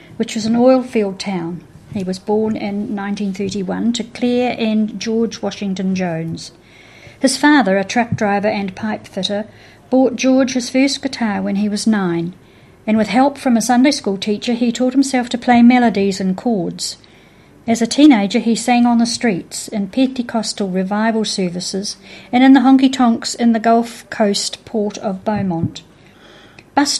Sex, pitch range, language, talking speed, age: female, 200-245 Hz, English, 160 wpm, 50-69